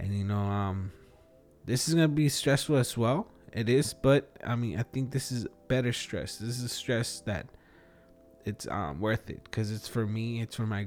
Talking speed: 215 wpm